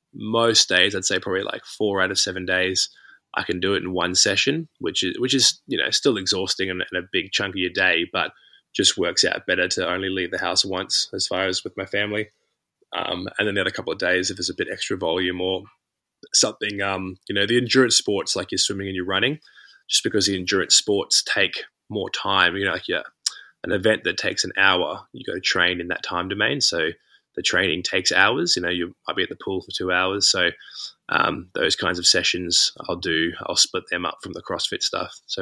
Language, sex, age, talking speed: English, male, 20-39, 230 wpm